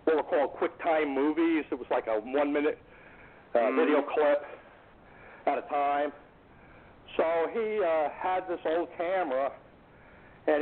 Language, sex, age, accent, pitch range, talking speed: English, male, 60-79, American, 135-165 Hz, 135 wpm